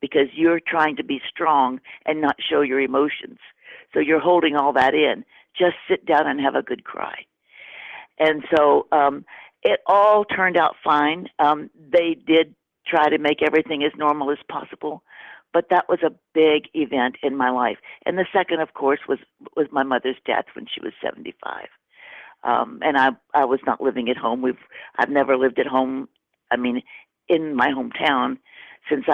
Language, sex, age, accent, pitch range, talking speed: English, female, 50-69, American, 135-170 Hz, 180 wpm